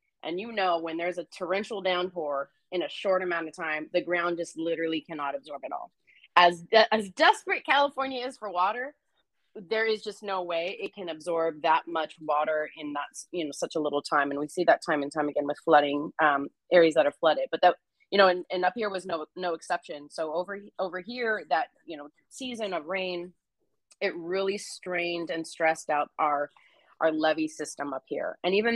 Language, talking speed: English, 210 wpm